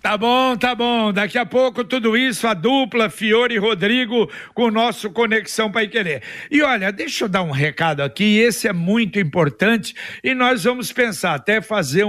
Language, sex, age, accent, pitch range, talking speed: Portuguese, male, 60-79, Brazilian, 205-250 Hz, 190 wpm